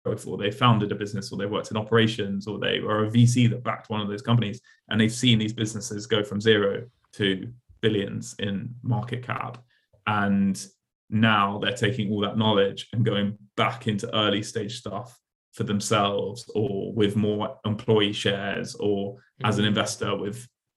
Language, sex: English, male